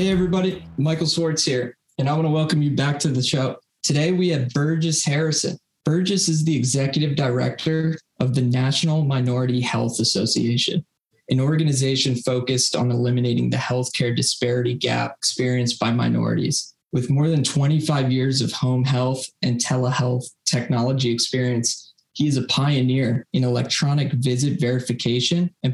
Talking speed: 150 wpm